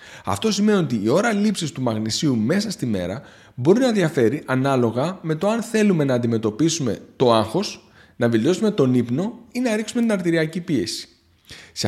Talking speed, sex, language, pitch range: 170 wpm, male, Greek, 110-175 Hz